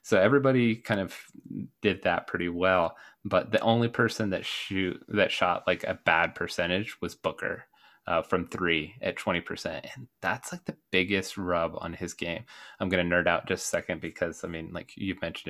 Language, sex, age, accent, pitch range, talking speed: English, male, 30-49, American, 85-105 Hz, 195 wpm